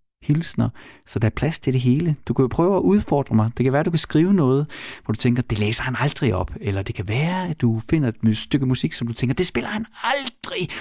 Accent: native